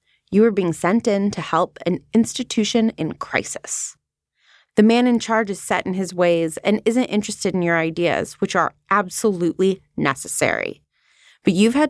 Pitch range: 175-240 Hz